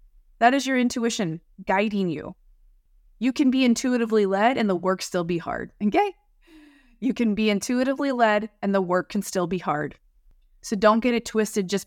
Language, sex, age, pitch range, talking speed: English, female, 20-39, 185-225 Hz, 180 wpm